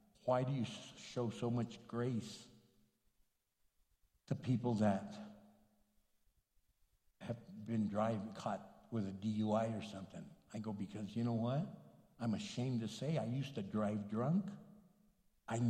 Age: 60-79